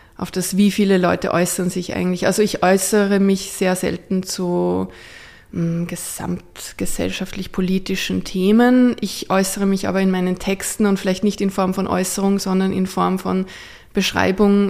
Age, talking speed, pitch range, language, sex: 20-39, 145 wpm, 185-210 Hz, German, female